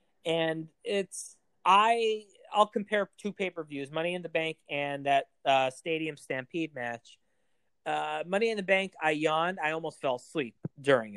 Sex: male